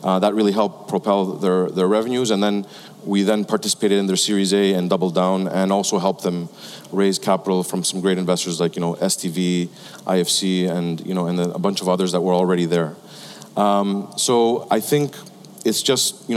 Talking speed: 200 wpm